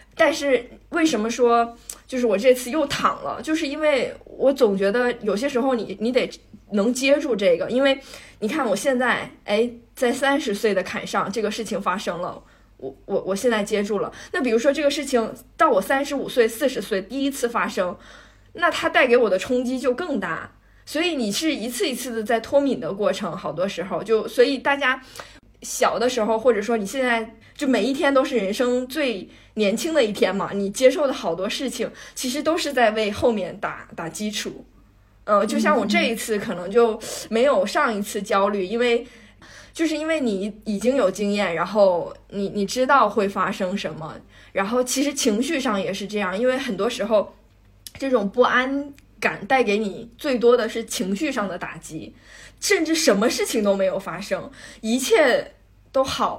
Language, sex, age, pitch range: Chinese, female, 20-39, 205-270 Hz